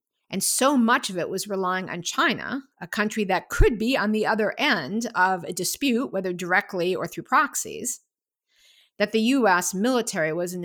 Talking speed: 180 wpm